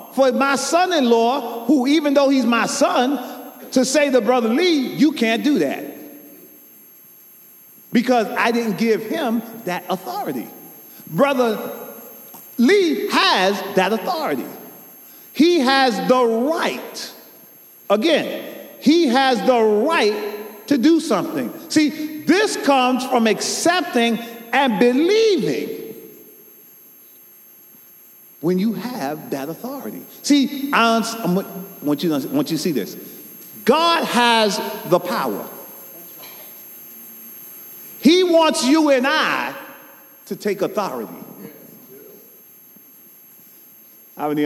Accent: American